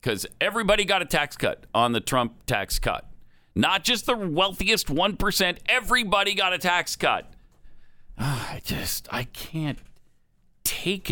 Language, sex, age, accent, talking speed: English, male, 50-69, American, 140 wpm